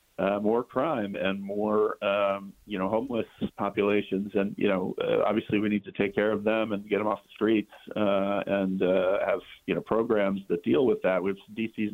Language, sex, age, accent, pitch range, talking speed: English, male, 40-59, American, 95-105 Hz, 205 wpm